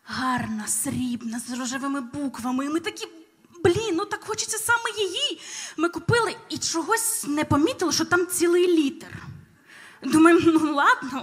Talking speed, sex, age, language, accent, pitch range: 145 wpm, female, 20-39, Ukrainian, native, 265-360 Hz